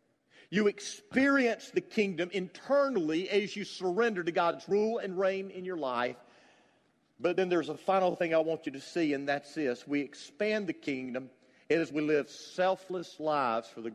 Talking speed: 175 wpm